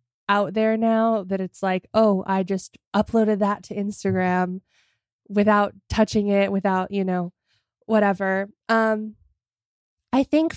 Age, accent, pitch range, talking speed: 20-39, American, 190-220 Hz, 130 wpm